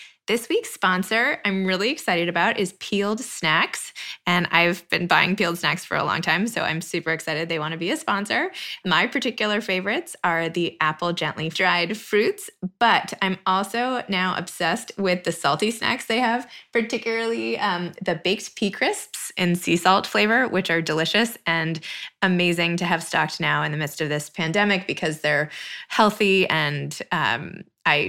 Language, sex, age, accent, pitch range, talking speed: English, female, 20-39, American, 175-225 Hz, 175 wpm